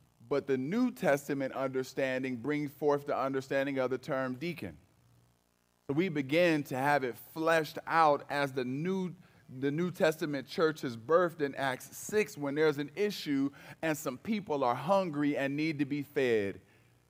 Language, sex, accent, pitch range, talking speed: English, male, American, 105-150 Hz, 165 wpm